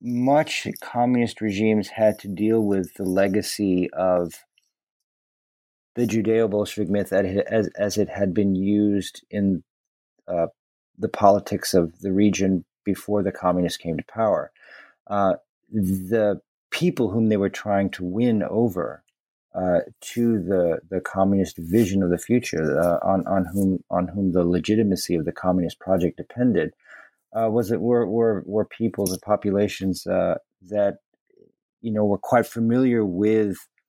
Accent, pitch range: American, 90-110 Hz